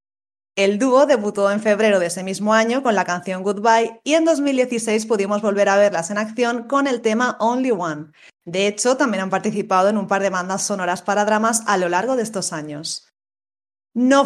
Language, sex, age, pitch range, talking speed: Spanish, female, 20-39, 190-240 Hz, 200 wpm